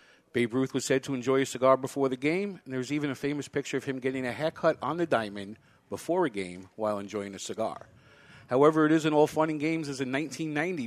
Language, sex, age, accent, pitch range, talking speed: English, male, 50-69, American, 115-150 Hz, 235 wpm